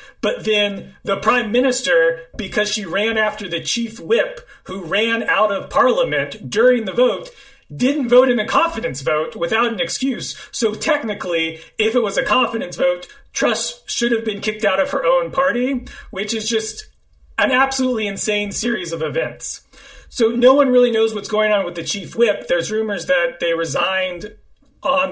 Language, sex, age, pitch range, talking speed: English, male, 40-59, 170-255 Hz, 175 wpm